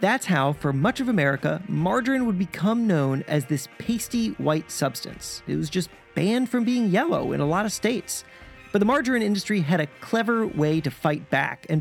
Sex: male